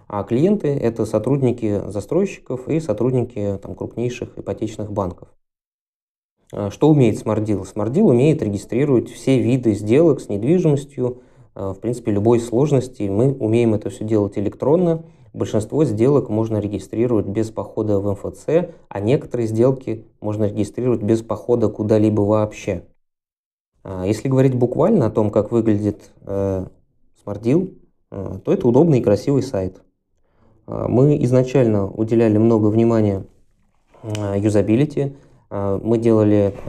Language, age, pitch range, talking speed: Russian, 20-39, 105-125 Hz, 115 wpm